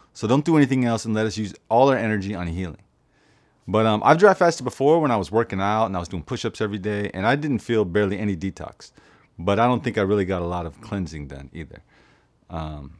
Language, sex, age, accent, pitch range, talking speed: English, male, 30-49, American, 85-110 Hz, 245 wpm